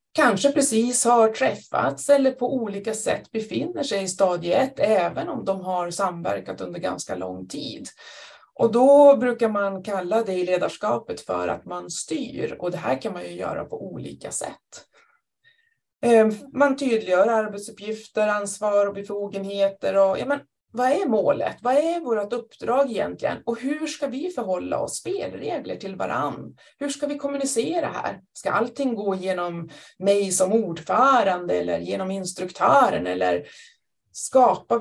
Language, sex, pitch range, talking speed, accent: Swedish, female, 195-270 Hz, 145 wpm, native